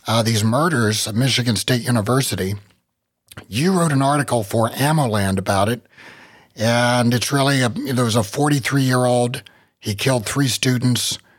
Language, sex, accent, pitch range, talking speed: English, male, American, 110-140 Hz, 140 wpm